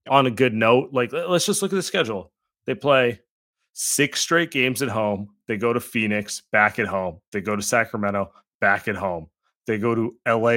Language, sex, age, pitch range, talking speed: English, male, 30-49, 110-145 Hz, 205 wpm